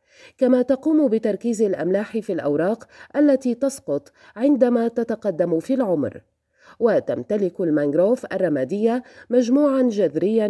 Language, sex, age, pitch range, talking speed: Arabic, female, 30-49, 190-255 Hz, 95 wpm